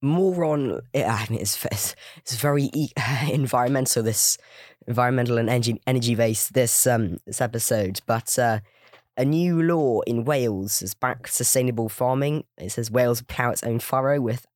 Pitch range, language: 115-130 Hz, English